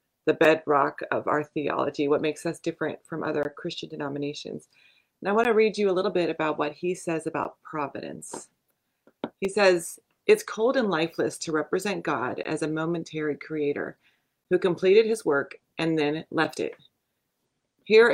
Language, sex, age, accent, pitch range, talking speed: English, female, 30-49, American, 150-175 Hz, 165 wpm